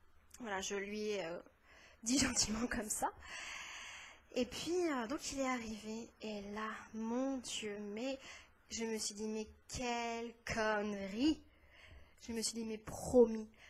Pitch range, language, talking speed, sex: 210-255 Hz, French, 145 wpm, female